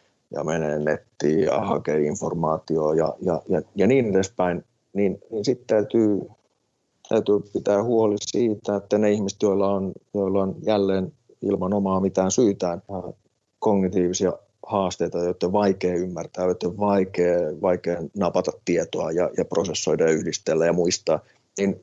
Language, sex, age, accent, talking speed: Finnish, male, 30-49, native, 135 wpm